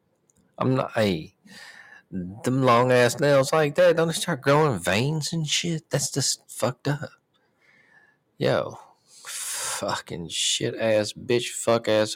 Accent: American